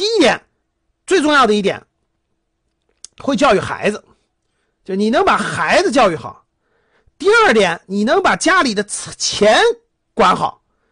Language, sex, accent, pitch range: Chinese, male, native, 195-265 Hz